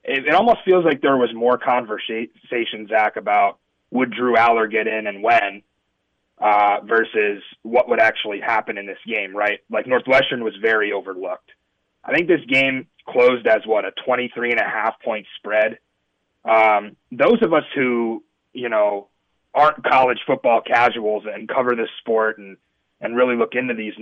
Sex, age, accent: male, 30-49, American